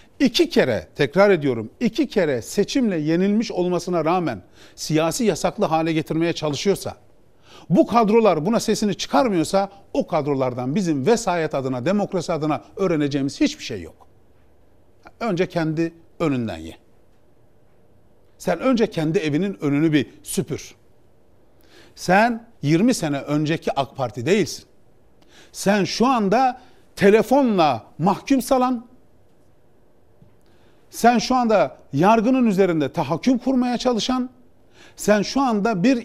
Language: Turkish